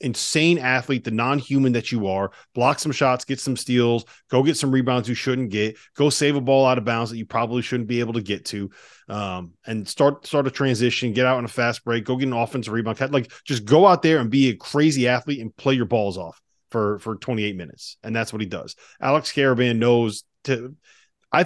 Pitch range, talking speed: 105-130 Hz, 230 wpm